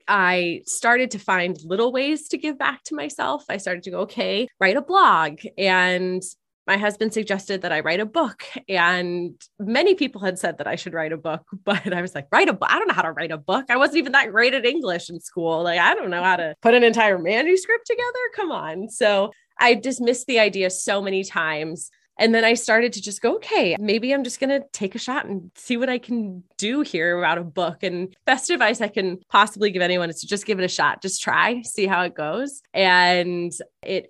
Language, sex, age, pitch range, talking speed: English, female, 20-39, 175-225 Hz, 235 wpm